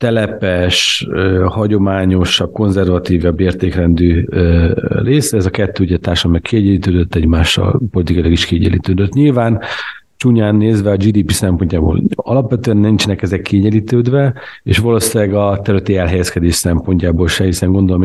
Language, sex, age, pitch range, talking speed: Hungarian, male, 50-69, 90-110 Hz, 115 wpm